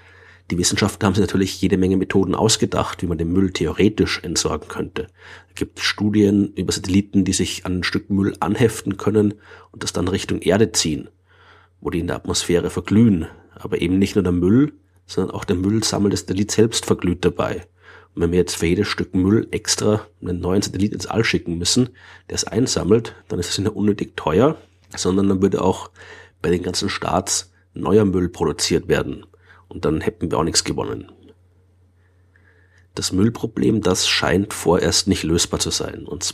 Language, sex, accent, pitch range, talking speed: German, male, German, 90-105 Hz, 185 wpm